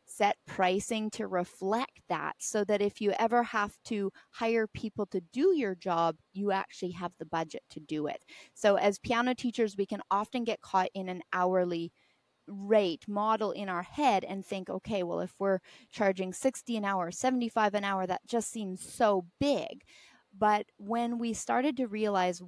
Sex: female